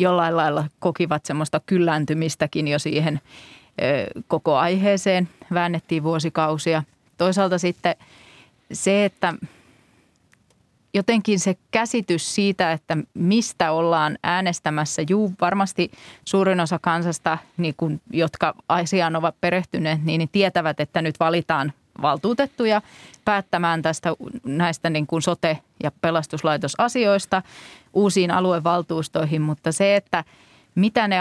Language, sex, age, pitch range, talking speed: Finnish, female, 30-49, 155-185 Hz, 110 wpm